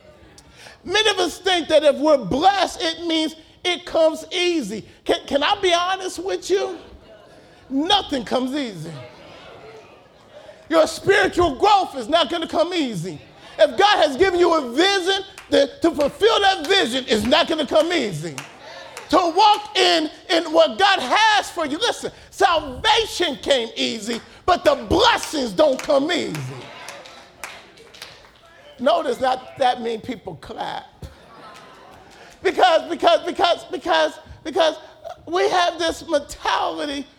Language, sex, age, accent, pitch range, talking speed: English, male, 40-59, American, 255-355 Hz, 135 wpm